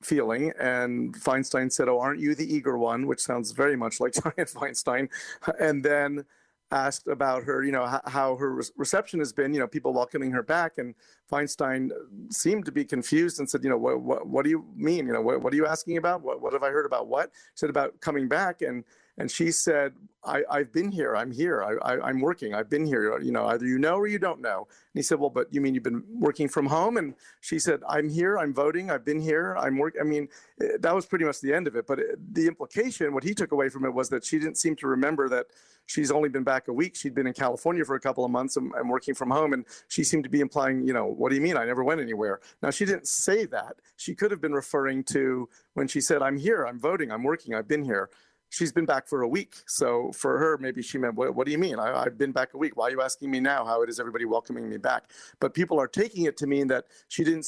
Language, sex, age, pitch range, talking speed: English, male, 50-69, 130-165 Hz, 265 wpm